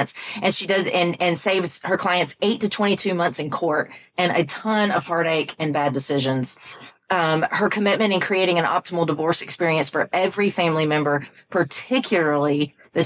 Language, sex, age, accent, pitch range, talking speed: English, female, 40-59, American, 155-205 Hz, 170 wpm